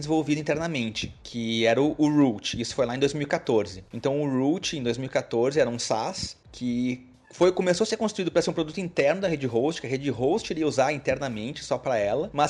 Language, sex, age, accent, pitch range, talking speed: Portuguese, male, 30-49, Brazilian, 135-170 Hz, 215 wpm